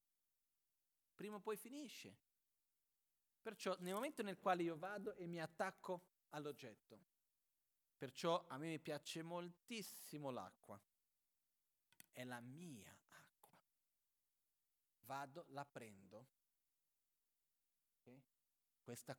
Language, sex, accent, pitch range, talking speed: Italian, male, native, 135-190 Hz, 95 wpm